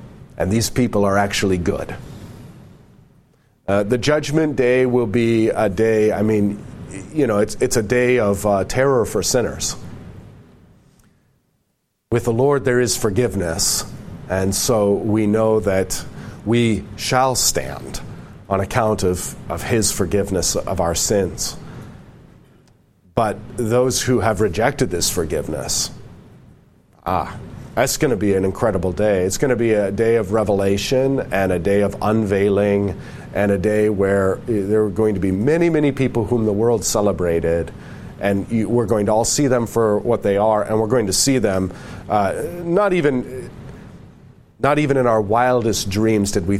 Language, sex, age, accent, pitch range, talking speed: English, male, 40-59, American, 100-125 Hz, 155 wpm